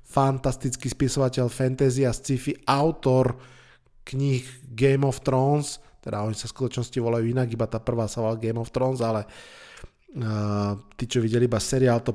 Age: 20-39